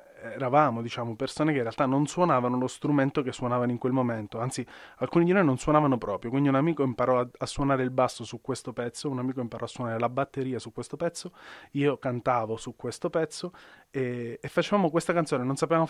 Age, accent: 30-49, native